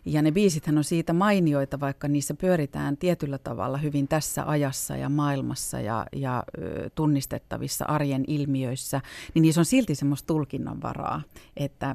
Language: Finnish